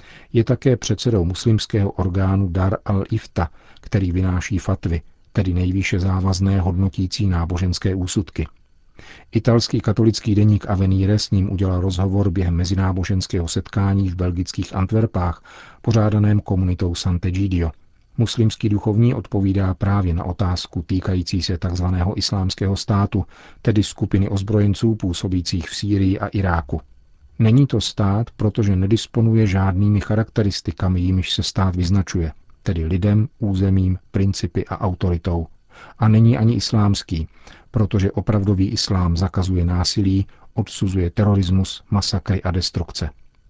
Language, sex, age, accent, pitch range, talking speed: Czech, male, 40-59, native, 90-105 Hz, 115 wpm